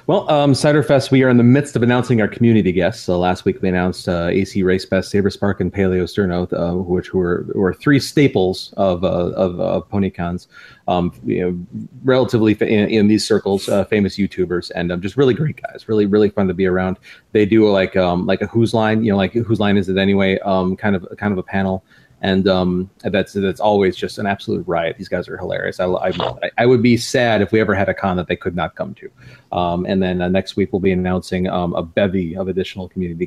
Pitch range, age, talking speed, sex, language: 95-110 Hz, 30-49, 235 wpm, male, English